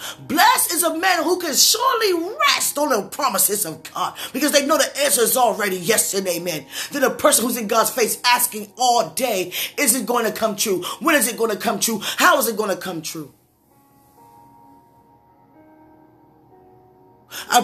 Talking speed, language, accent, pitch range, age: 185 wpm, English, American, 220-325 Hz, 20-39